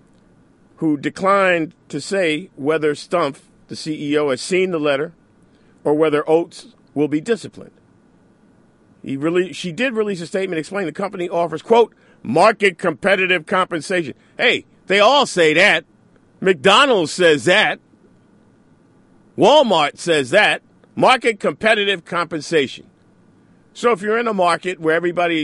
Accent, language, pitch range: American, English, 155-195 Hz